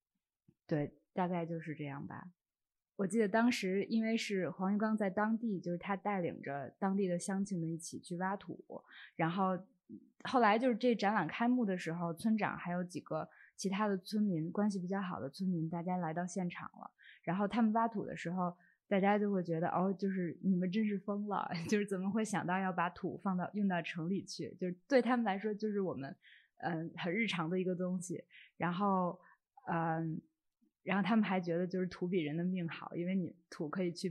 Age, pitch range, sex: 20-39, 170-210 Hz, female